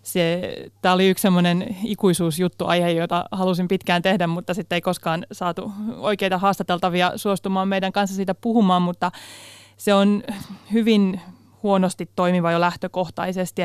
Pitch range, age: 175-190 Hz, 30-49